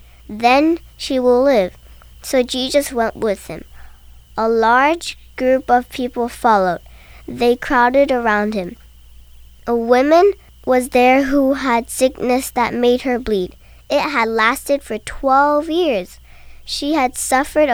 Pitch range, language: 215-265 Hz, Korean